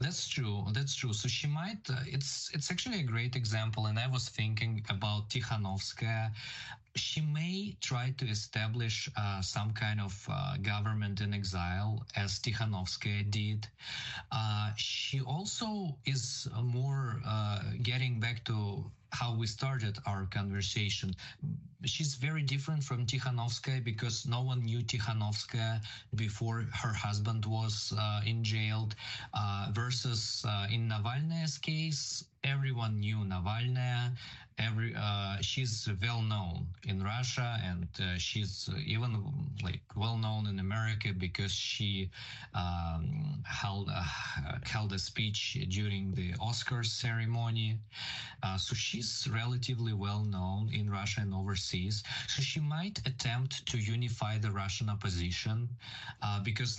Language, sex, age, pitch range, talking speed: English, male, 20-39, 105-125 Hz, 130 wpm